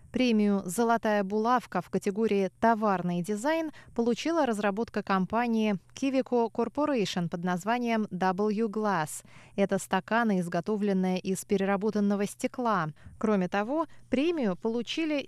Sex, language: female, Russian